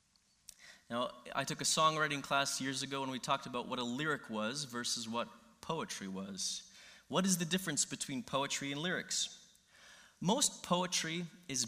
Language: English